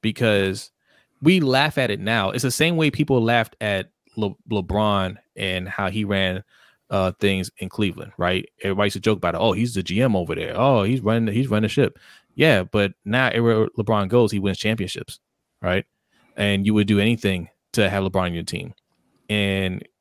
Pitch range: 100-115 Hz